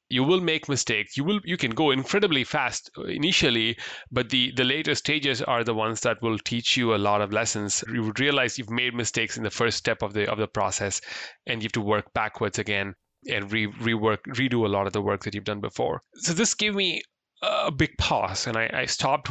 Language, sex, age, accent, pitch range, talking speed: English, male, 30-49, Indian, 105-135 Hz, 230 wpm